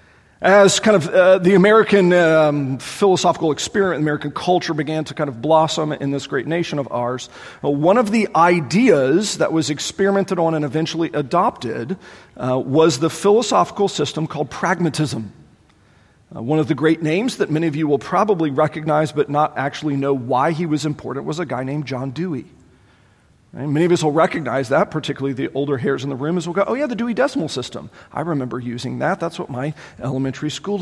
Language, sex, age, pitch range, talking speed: English, male, 40-59, 140-190 Hz, 190 wpm